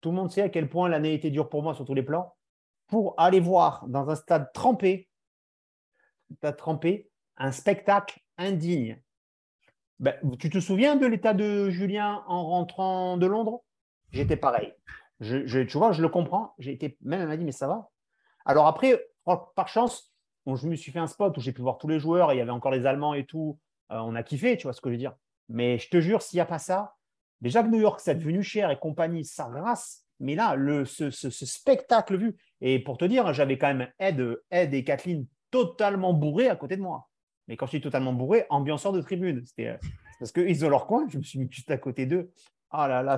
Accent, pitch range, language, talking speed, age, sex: French, 140-195 Hz, French, 235 wpm, 30-49, male